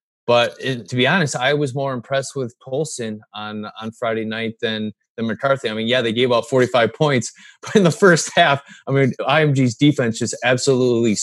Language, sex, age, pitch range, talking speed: English, male, 20-39, 110-130 Hz, 200 wpm